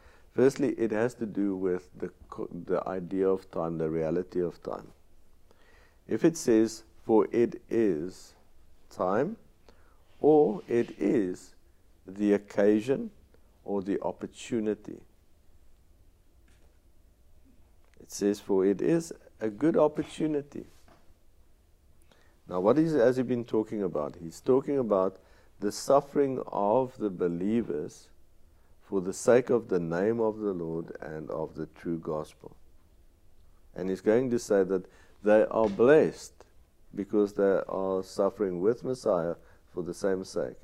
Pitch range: 85-110 Hz